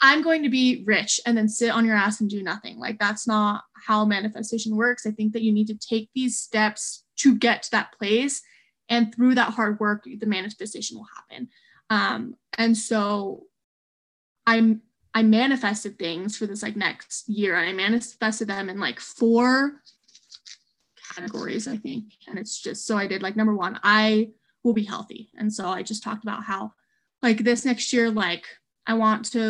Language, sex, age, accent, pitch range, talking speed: English, female, 20-39, American, 210-240 Hz, 190 wpm